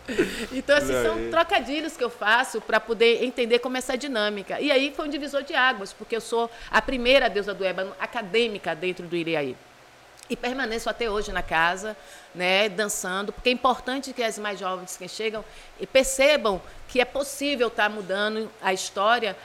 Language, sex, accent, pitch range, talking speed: Portuguese, female, Brazilian, 205-260 Hz, 180 wpm